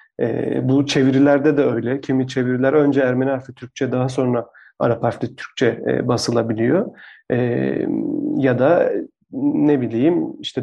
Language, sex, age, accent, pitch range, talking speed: Turkish, male, 40-59, native, 130-145 Hz, 135 wpm